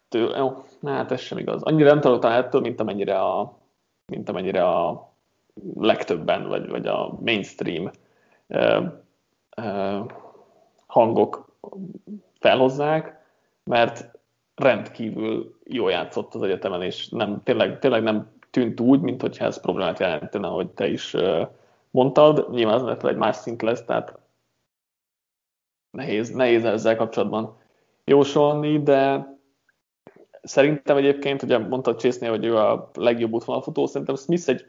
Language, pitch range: Hungarian, 115-140 Hz